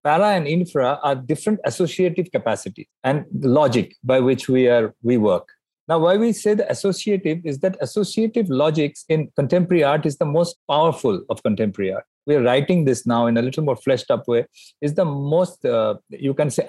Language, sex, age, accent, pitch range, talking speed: English, male, 50-69, Indian, 130-185 Hz, 190 wpm